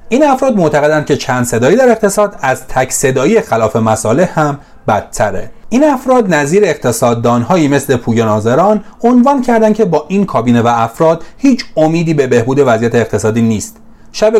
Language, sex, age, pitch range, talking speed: Persian, male, 30-49, 110-170 Hz, 160 wpm